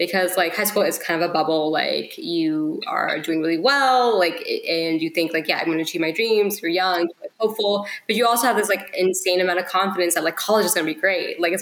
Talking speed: 265 wpm